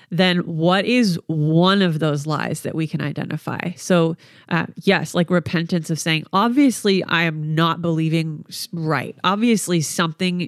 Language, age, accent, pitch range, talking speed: English, 30-49, American, 160-185 Hz, 150 wpm